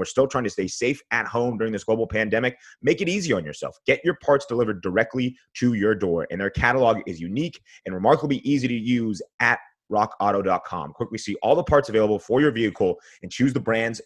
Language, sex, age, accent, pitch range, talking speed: English, male, 30-49, American, 100-125 Hz, 215 wpm